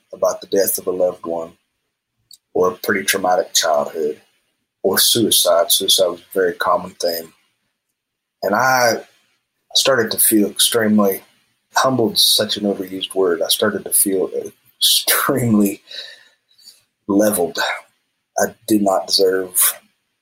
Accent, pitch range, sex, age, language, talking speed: American, 95-130 Hz, male, 30-49, English, 120 wpm